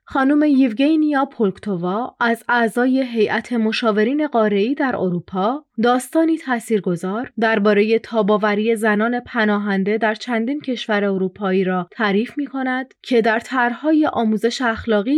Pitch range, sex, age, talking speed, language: 205-255 Hz, female, 30-49, 110 wpm, Persian